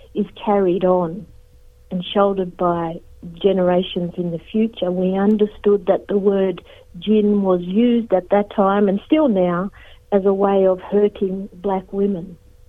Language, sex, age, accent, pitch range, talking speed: English, female, 60-79, Australian, 185-220 Hz, 145 wpm